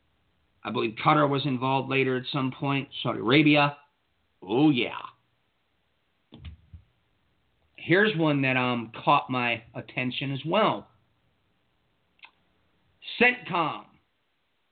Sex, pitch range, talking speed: male, 105-145 Hz, 95 wpm